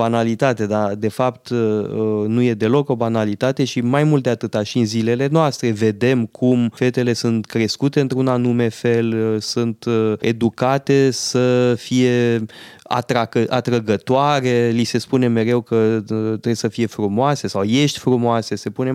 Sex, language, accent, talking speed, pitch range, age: male, Romanian, native, 145 wpm, 115-135 Hz, 20-39